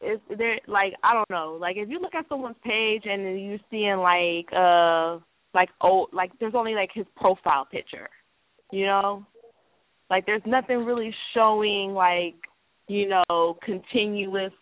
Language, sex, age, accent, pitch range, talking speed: English, female, 20-39, American, 175-215 Hz, 155 wpm